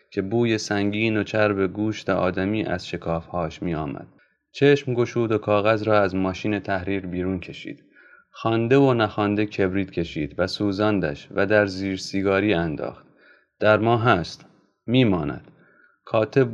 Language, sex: Persian, male